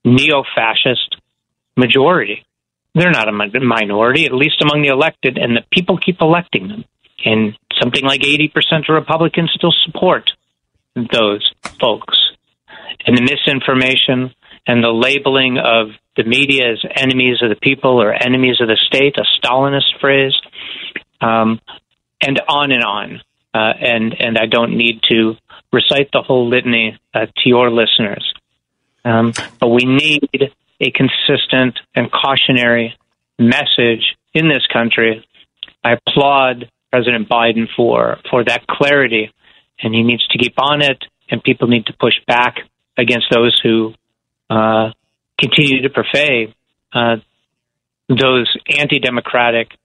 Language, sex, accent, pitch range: English, male, American, 115-140 Hz